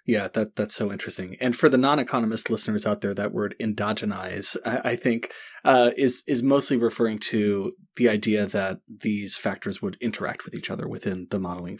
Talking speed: 190 wpm